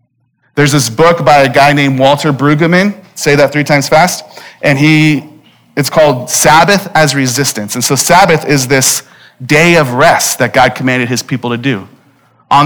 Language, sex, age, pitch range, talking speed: English, male, 30-49, 130-160 Hz, 175 wpm